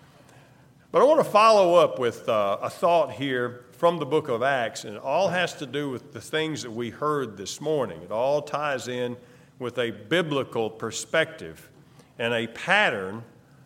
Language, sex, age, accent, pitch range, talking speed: English, male, 50-69, American, 130-160 Hz, 180 wpm